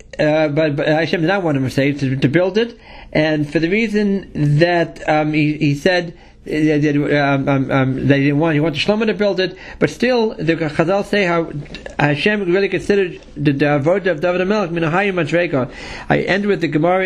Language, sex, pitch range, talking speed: English, male, 155-215 Hz, 205 wpm